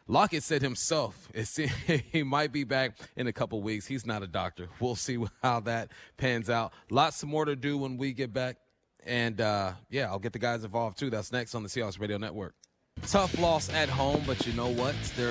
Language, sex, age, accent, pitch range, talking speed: English, male, 30-49, American, 110-140 Hz, 215 wpm